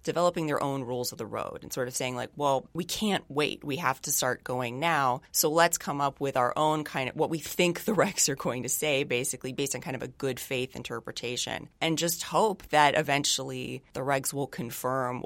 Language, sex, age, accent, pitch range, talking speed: English, female, 30-49, American, 130-160 Hz, 230 wpm